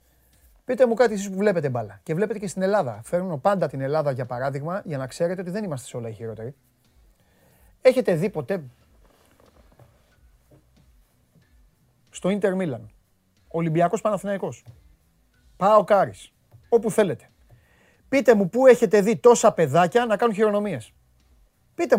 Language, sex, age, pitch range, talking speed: Greek, male, 30-49, 135-230 Hz, 135 wpm